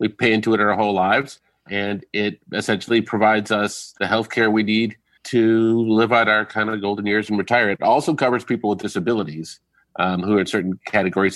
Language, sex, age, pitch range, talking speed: English, male, 40-59, 95-110 Hz, 205 wpm